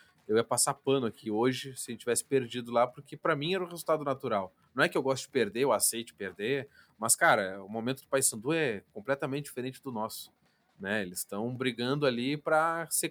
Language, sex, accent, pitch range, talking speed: Portuguese, male, Brazilian, 115-160 Hz, 225 wpm